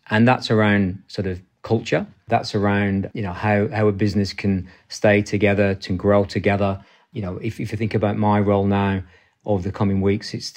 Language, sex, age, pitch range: English, male, 40-59, 100-115 Hz